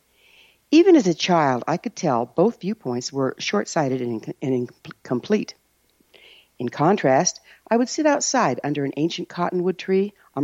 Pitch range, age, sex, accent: 135-195 Hz, 60-79, female, American